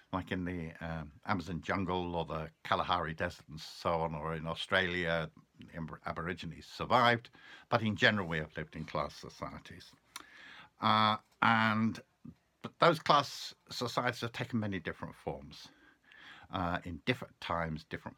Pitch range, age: 85-120 Hz, 60-79